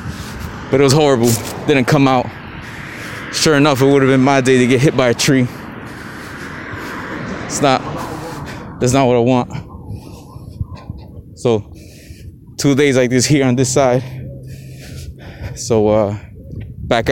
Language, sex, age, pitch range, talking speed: English, male, 20-39, 115-140 Hz, 140 wpm